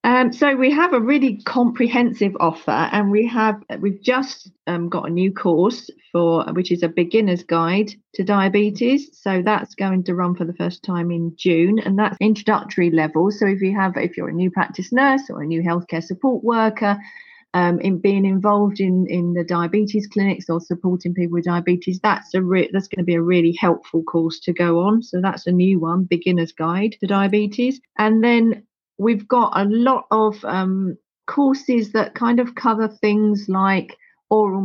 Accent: British